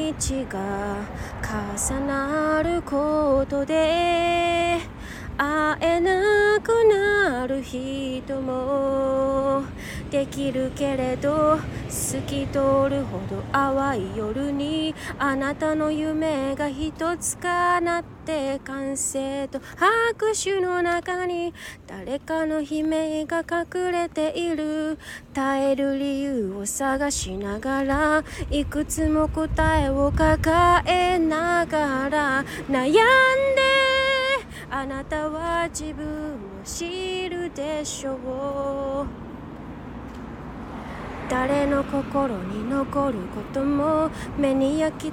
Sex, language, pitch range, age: female, Japanese, 270-345 Hz, 20-39